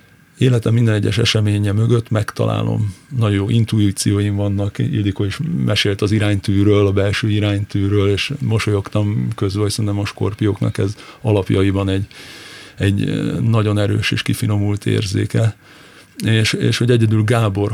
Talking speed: 130 wpm